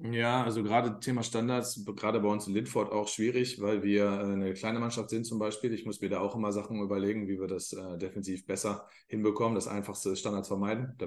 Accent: German